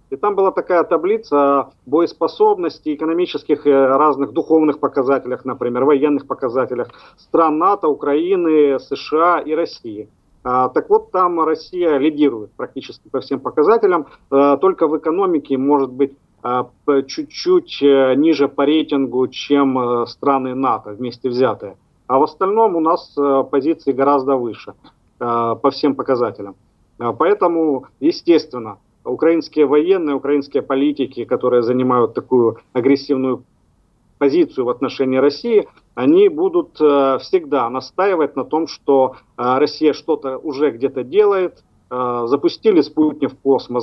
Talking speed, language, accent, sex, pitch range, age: 115 wpm, Russian, native, male, 130-165 Hz, 40-59